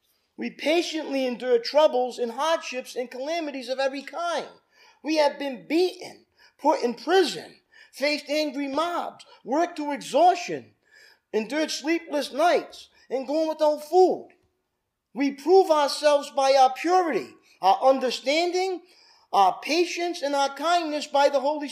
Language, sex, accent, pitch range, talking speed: English, male, American, 265-335 Hz, 135 wpm